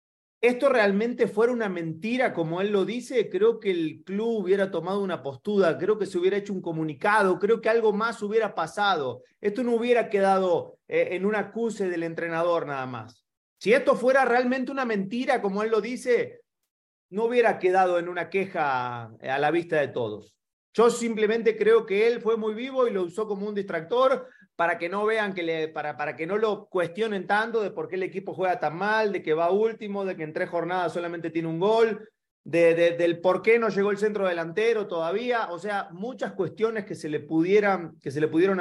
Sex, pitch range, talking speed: male, 165-225 Hz, 205 wpm